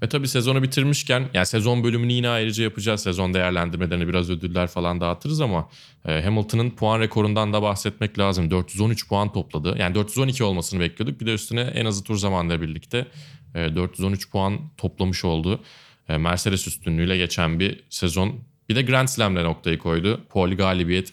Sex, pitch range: male, 90-125 Hz